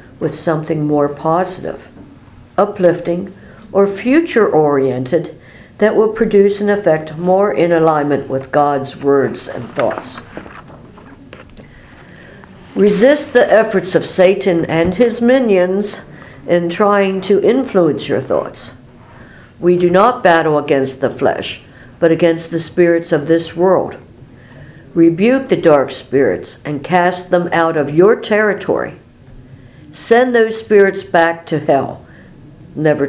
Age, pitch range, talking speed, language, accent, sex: 60-79, 145-190 Hz, 120 wpm, English, American, female